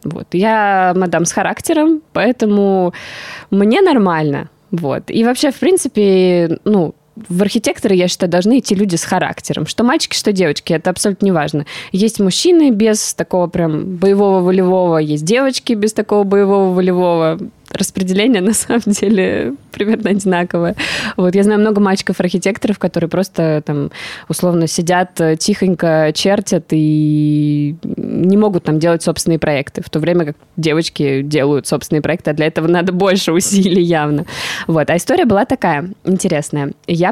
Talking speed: 140 wpm